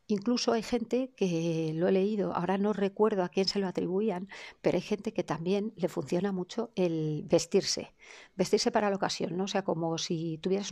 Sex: female